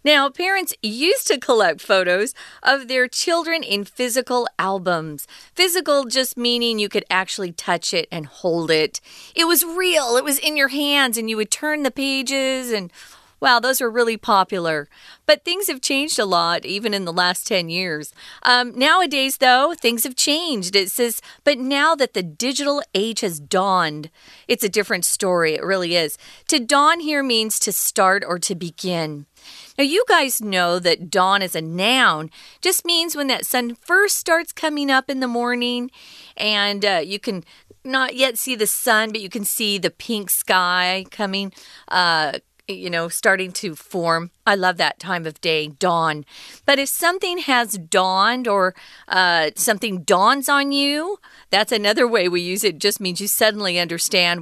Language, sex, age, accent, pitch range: Chinese, female, 40-59, American, 180-275 Hz